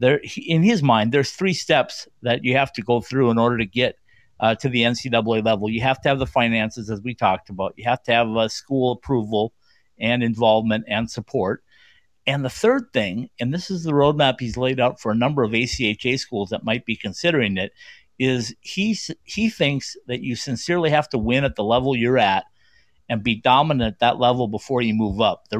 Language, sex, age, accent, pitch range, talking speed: English, male, 50-69, American, 110-135 Hz, 215 wpm